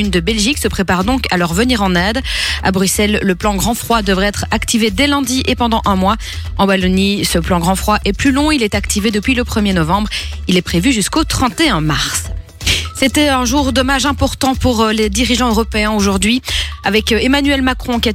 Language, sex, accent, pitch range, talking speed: French, female, French, 190-245 Hz, 210 wpm